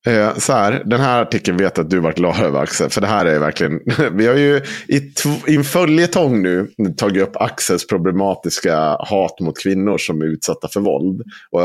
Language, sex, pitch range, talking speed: Swedish, male, 90-130 Hz, 200 wpm